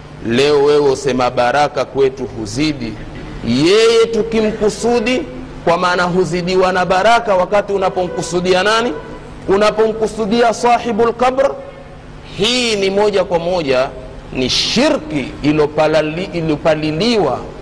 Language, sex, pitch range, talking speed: Swahili, male, 130-185 Hz, 95 wpm